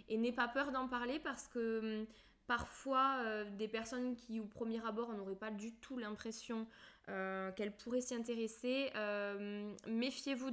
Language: French